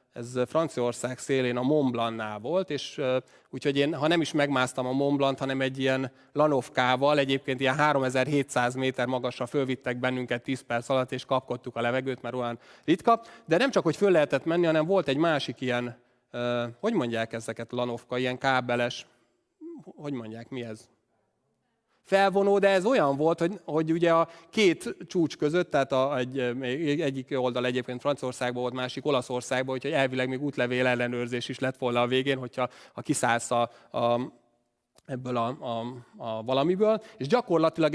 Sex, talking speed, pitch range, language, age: male, 165 wpm, 125-155 Hz, Hungarian, 30-49